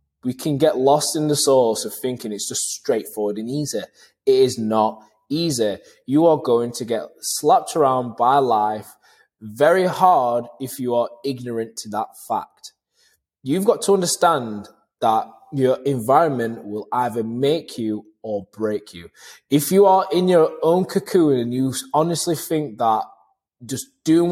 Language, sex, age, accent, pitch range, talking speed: English, male, 20-39, British, 110-160 Hz, 160 wpm